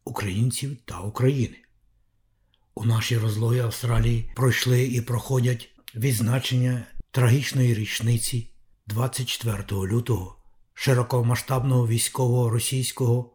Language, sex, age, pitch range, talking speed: Ukrainian, male, 60-79, 115-125 Hz, 80 wpm